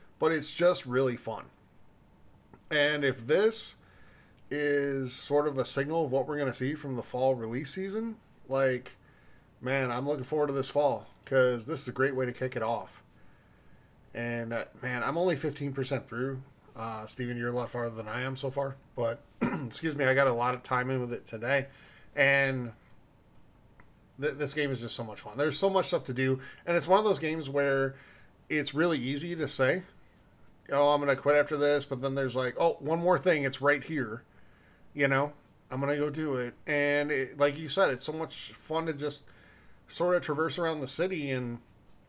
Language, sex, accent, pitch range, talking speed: English, male, American, 125-150 Hz, 205 wpm